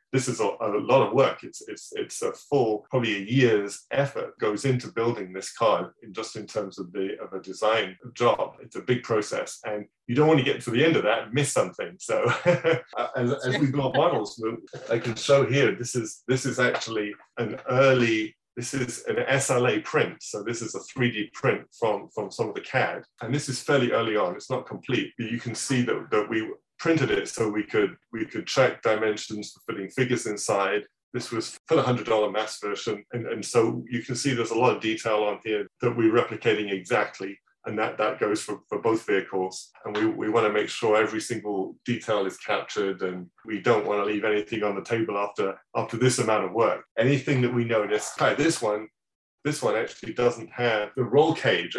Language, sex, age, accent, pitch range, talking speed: English, male, 30-49, British, 105-130 Hz, 220 wpm